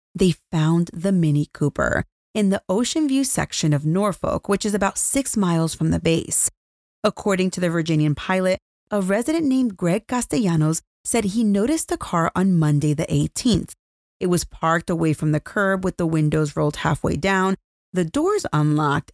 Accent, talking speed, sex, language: American, 170 wpm, female, English